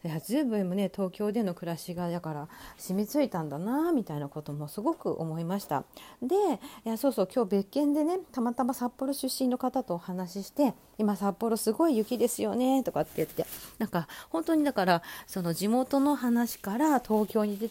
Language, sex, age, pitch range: Japanese, female, 40-59, 190-275 Hz